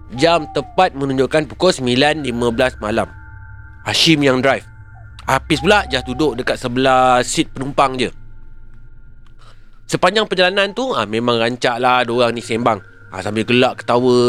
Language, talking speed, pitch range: Malay, 145 wpm, 110-145 Hz